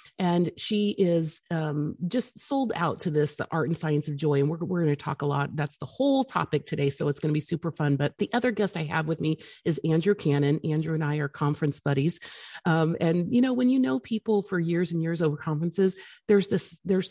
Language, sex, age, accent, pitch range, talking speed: English, female, 30-49, American, 155-195 Hz, 235 wpm